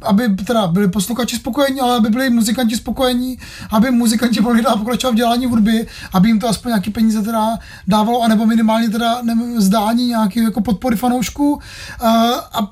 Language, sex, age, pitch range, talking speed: Czech, male, 30-49, 220-245 Hz, 165 wpm